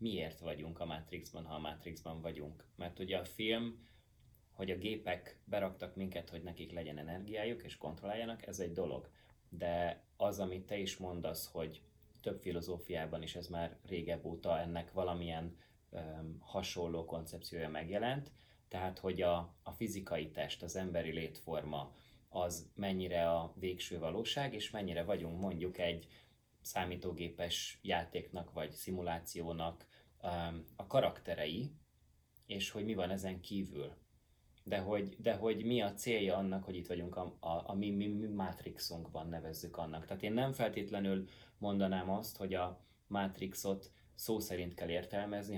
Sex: male